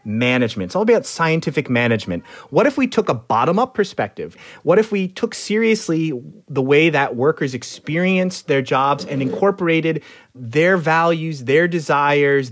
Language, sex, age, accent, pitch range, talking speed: English, male, 30-49, American, 115-165 Hz, 150 wpm